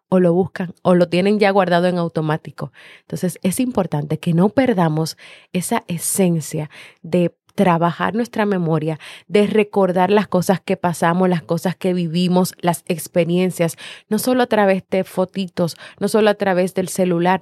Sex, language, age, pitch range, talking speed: female, Spanish, 30-49, 170-205 Hz, 160 wpm